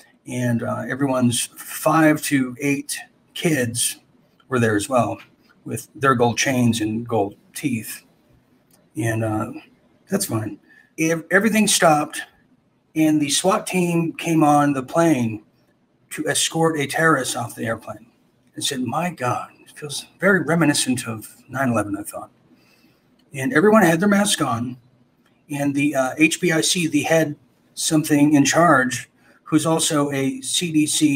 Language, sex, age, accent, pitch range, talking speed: English, male, 40-59, American, 125-160 Hz, 135 wpm